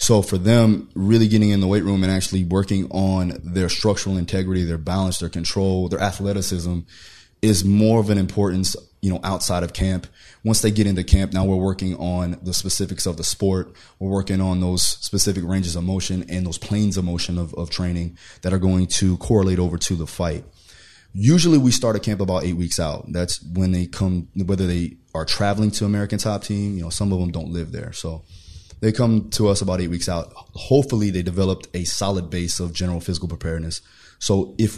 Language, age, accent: English, 20-39, American